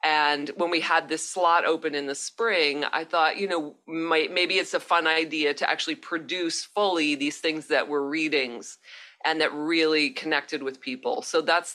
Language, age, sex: English, 40-59, female